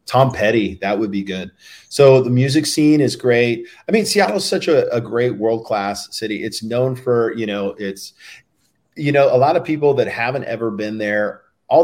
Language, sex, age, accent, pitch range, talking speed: English, male, 40-59, American, 100-120 Hz, 205 wpm